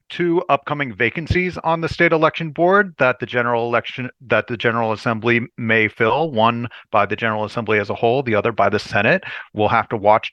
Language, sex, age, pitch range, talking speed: English, male, 40-59, 115-140 Hz, 205 wpm